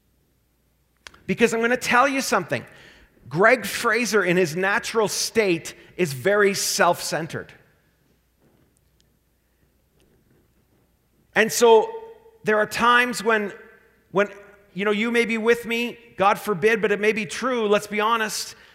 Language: English